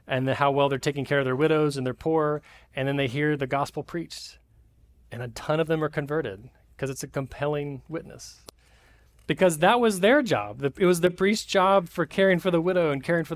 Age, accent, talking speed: 30-49, American, 220 wpm